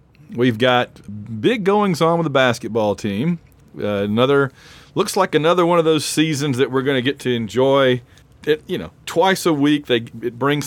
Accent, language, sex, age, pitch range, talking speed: American, English, male, 40-59, 115-165 Hz, 185 wpm